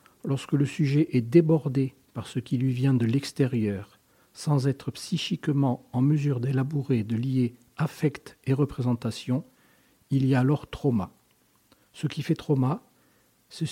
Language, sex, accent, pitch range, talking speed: French, male, French, 125-145 Hz, 145 wpm